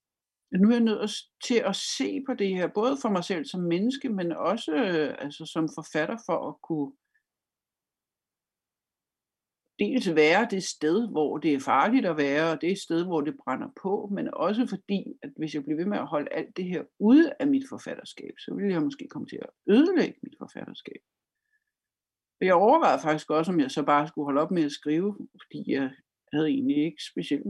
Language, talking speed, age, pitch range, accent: Danish, 195 wpm, 60-79, 160-245 Hz, native